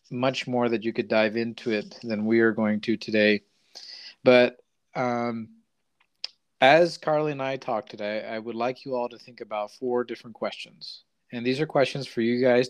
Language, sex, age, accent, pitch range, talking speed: English, male, 40-59, American, 110-130 Hz, 190 wpm